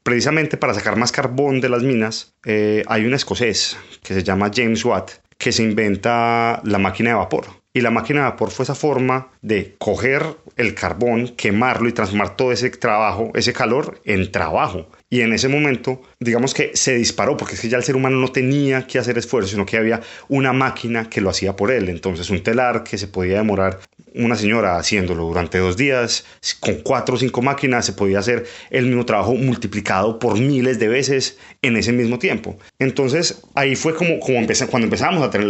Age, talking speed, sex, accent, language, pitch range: 30-49, 200 wpm, male, Colombian, Spanish, 105-130 Hz